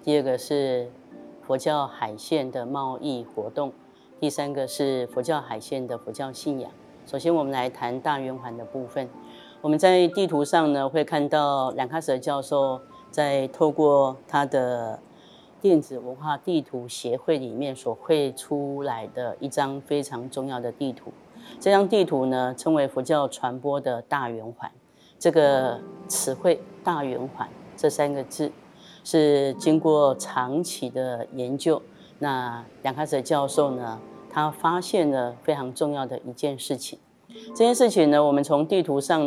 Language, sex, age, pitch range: Chinese, female, 30-49, 130-150 Hz